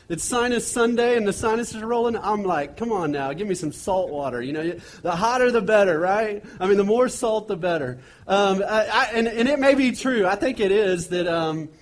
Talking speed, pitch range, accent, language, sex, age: 230 wpm, 175-225 Hz, American, English, male, 30-49